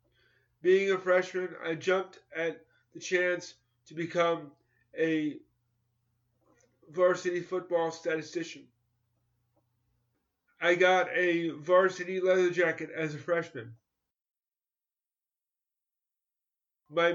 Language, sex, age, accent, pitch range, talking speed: English, male, 30-49, American, 165-185 Hz, 85 wpm